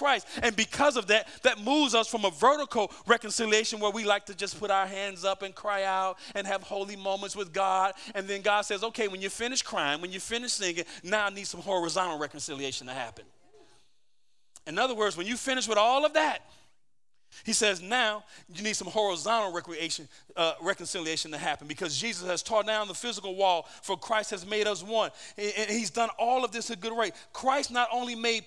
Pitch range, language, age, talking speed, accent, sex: 145-225 Hz, English, 40-59, 210 wpm, American, male